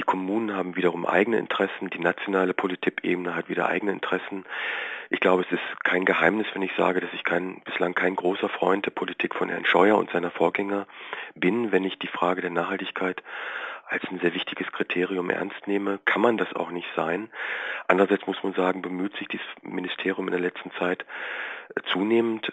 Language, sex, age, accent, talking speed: German, male, 40-59, German, 185 wpm